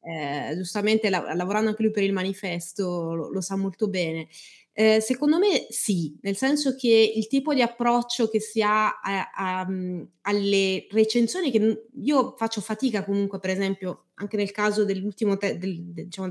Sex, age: female, 20-39